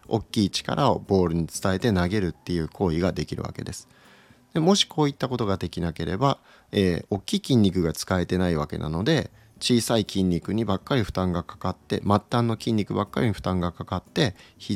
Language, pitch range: Japanese, 90-130 Hz